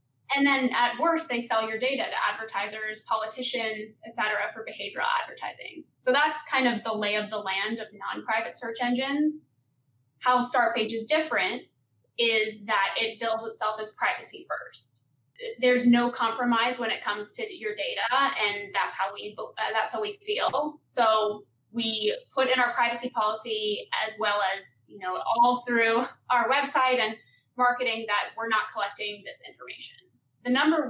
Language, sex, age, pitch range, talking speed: English, female, 10-29, 215-245 Hz, 165 wpm